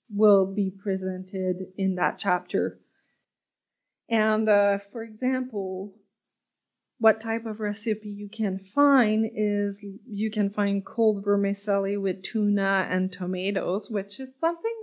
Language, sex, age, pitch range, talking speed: French, female, 20-39, 190-225 Hz, 120 wpm